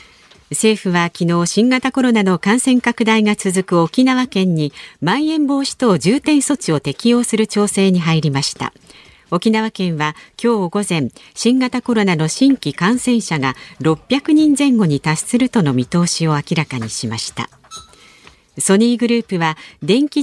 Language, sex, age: Japanese, female, 50-69